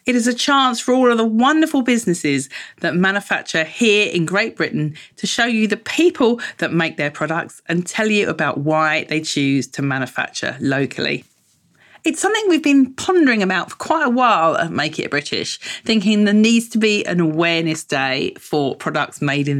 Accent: British